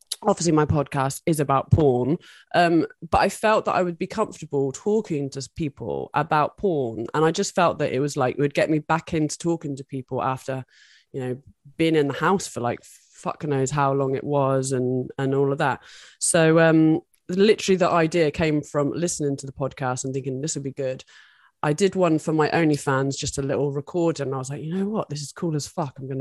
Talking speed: 225 wpm